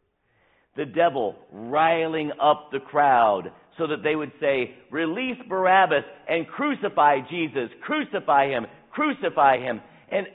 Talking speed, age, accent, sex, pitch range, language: 120 wpm, 50-69, American, male, 145-210 Hz, English